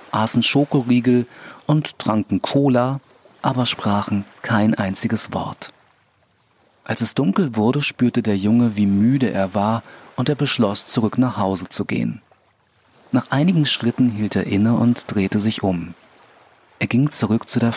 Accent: German